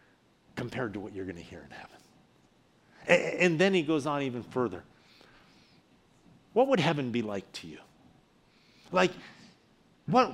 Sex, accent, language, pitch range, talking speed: male, American, English, 130-175 Hz, 150 wpm